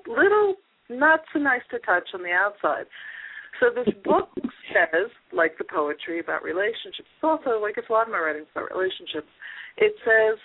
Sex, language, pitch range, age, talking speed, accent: female, English, 155-245 Hz, 40-59, 170 wpm, American